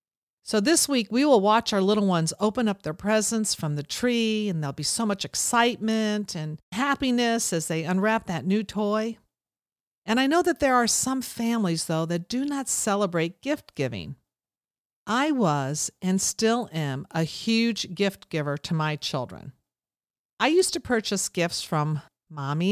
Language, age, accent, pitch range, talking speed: English, 50-69, American, 165-230 Hz, 165 wpm